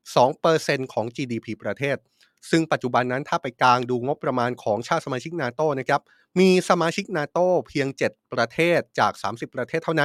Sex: male